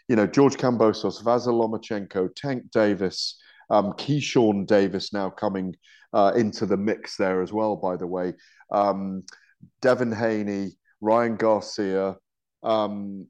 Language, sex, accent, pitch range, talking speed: English, male, British, 115-155 Hz, 130 wpm